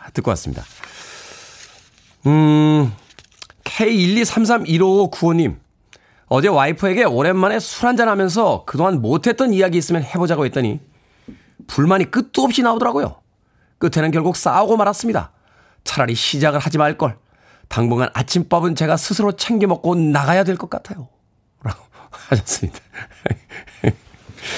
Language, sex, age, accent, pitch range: Korean, male, 40-59, native, 130-200 Hz